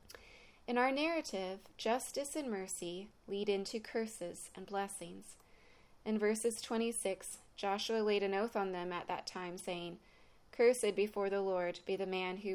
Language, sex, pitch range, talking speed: English, female, 185-210 Hz, 155 wpm